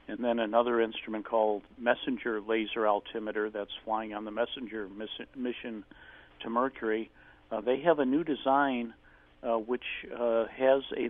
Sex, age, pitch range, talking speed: male, 50-69, 110-130 Hz, 145 wpm